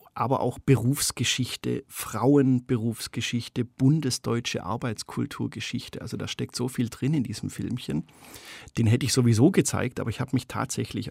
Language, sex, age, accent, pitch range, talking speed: German, male, 50-69, German, 110-135 Hz, 135 wpm